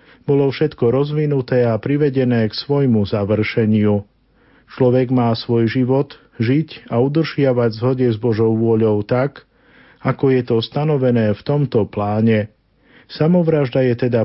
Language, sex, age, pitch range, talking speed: Slovak, male, 50-69, 115-135 Hz, 125 wpm